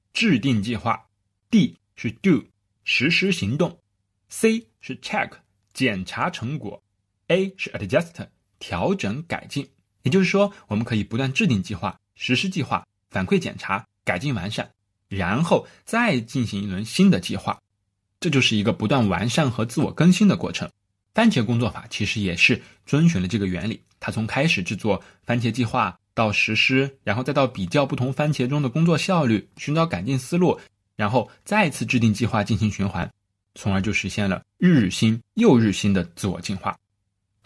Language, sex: Chinese, male